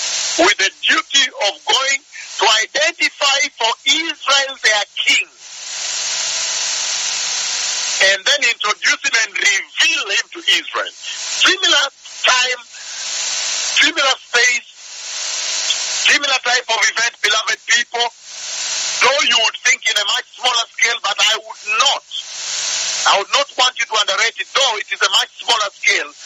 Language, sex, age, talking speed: English, male, 50-69, 135 wpm